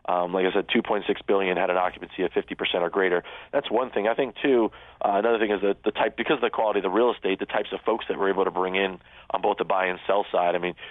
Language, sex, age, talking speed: English, male, 30-49, 290 wpm